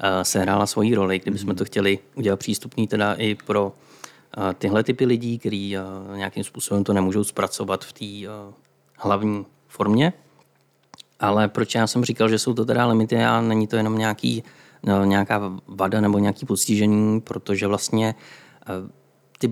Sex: male